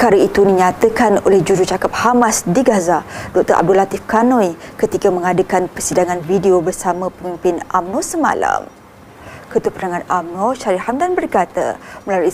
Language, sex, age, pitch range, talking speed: Malay, female, 20-39, 185-250 Hz, 130 wpm